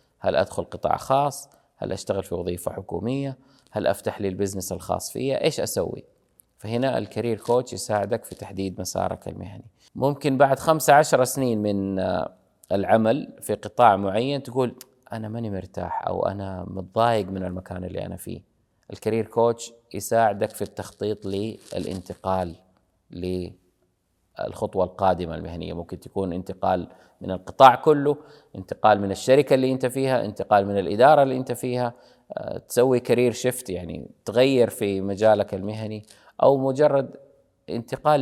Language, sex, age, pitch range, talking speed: Arabic, male, 30-49, 95-125 Hz, 135 wpm